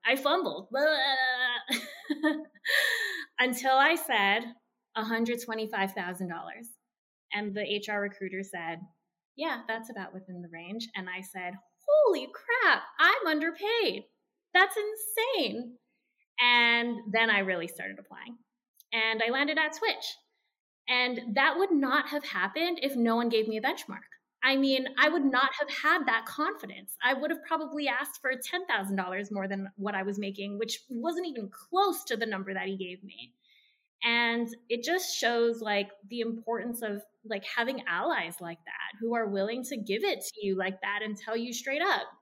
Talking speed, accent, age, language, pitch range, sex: 160 wpm, American, 20-39, English, 200-275 Hz, female